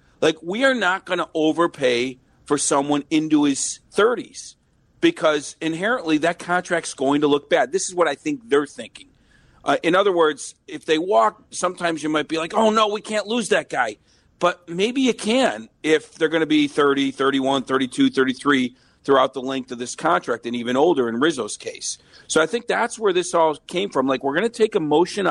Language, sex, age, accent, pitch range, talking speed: English, male, 40-59, American, 135-195 Hz, 205 wpm